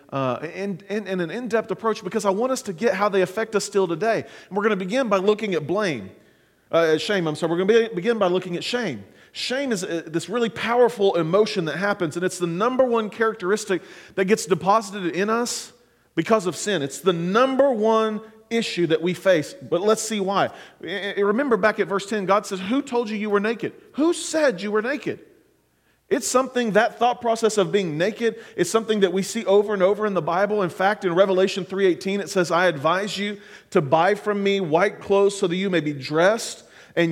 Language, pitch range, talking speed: English, 175-220 Hz, 220 wpm